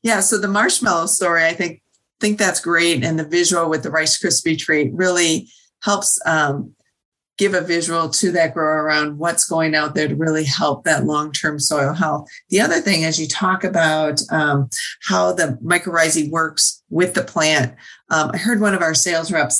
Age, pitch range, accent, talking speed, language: 40-59, 160-195 Hz, American, 190 wpm, English